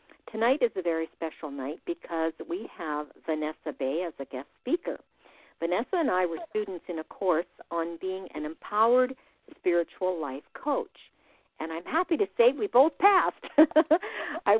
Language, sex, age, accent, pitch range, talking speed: English, female, 50-69, American, 155-205 Hz, 160 wpm